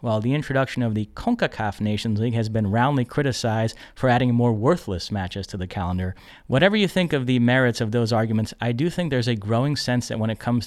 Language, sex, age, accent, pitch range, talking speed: English, male, 30-49, American, 110-130 Hz, 225 wpm